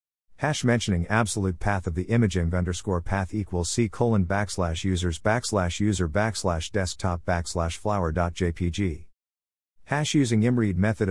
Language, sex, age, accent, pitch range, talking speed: English, male, 50-69, American, 85-120 Hz, 140 wpm